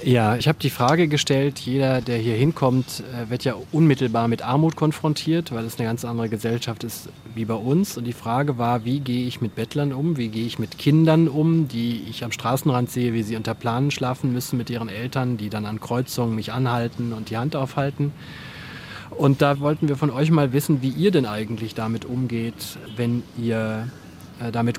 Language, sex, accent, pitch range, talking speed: German, male, German, 120-145 Hz, 200 wpm